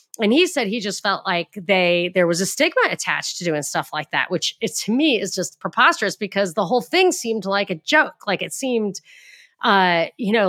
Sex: female